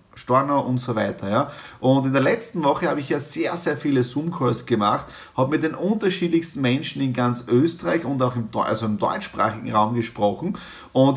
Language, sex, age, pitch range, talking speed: German, male, 30-49, 125-160 Hz, 175 wpm